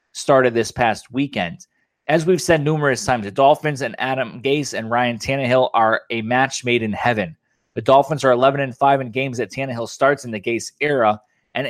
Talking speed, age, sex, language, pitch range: 200 wpm, 20-39, male, English, 125-155 Hz